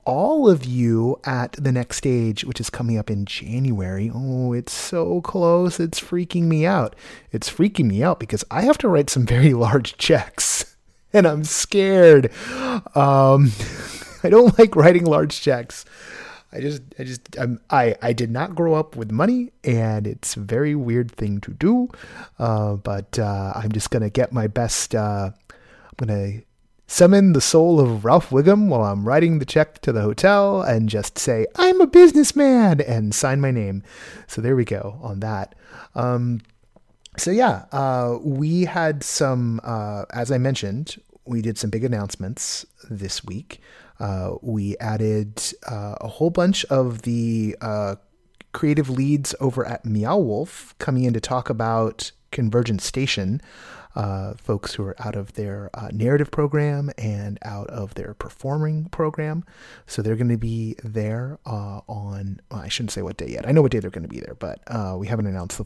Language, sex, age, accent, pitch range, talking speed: English, male, 30-49, American, 105-150 Hz, 175 wpm